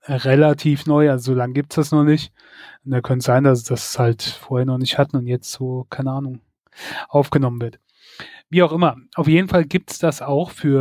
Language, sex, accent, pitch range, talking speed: German, male, German, 135-160 Hz, 210 wpm